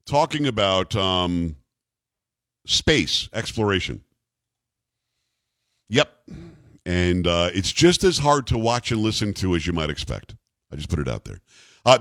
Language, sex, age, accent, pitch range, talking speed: English, male, 50-69, American, 110-140 Hz, 140 wpm